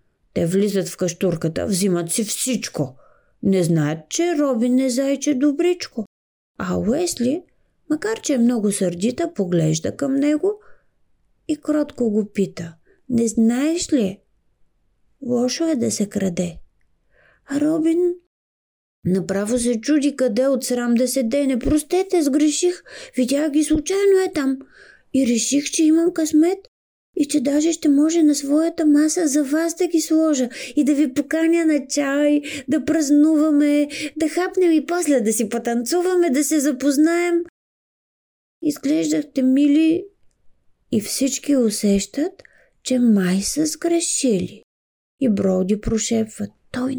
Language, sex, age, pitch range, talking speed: Bulgarian, female, 30-49, 225-310 Hz, 130 wpm